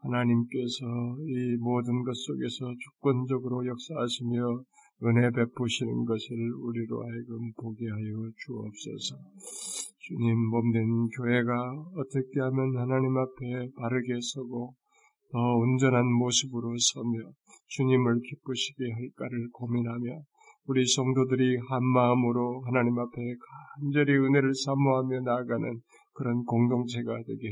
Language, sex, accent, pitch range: Korean, male, native, 125-145 Hz